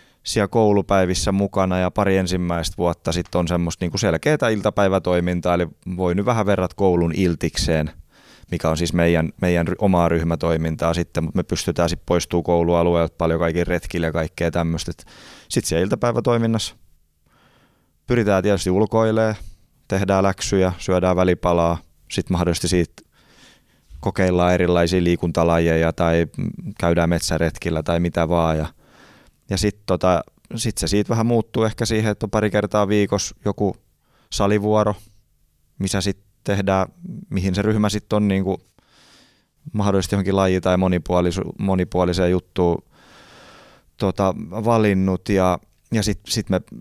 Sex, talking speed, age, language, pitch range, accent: male, 130 wpm, 20-39, Finnish, 85-100 Hz, native